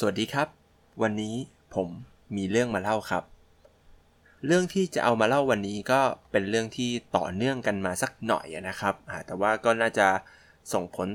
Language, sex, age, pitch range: Thai, male, 20-39, 95-125 Hz